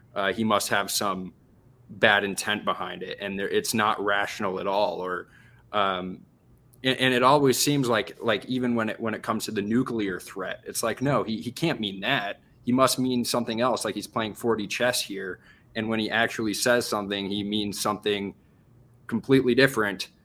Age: 20-39